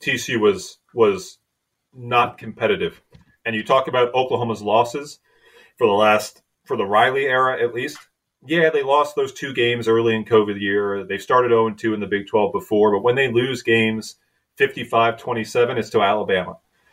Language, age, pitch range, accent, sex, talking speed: English, 30-49, 105-135 Hz, American, male, 165 wpm